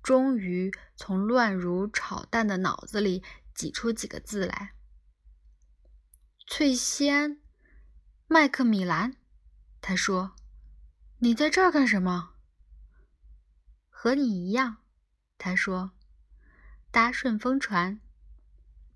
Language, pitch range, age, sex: Chinese, 150-230 Hz, 20-39, female